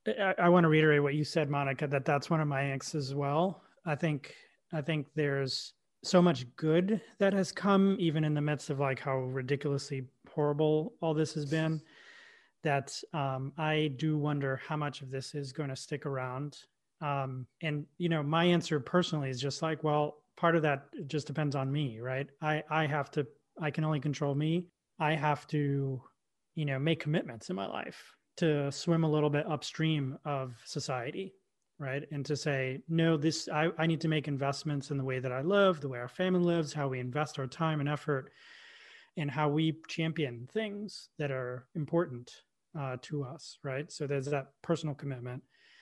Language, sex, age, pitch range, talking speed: English, male, 30-49, 140-165 Hz, 195 wpm